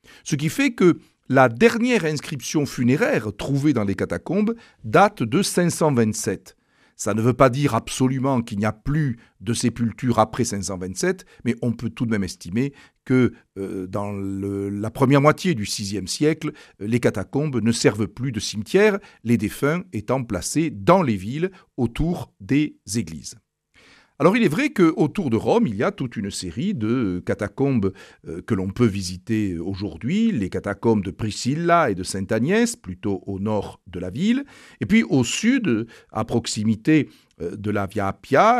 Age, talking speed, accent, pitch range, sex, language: 50-69, 165 wpm, French, 100-150 Hz, male, French